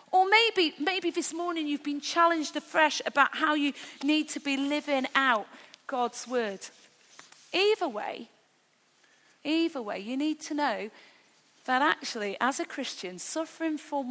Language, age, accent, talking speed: English, 40-59, British, 145 wpm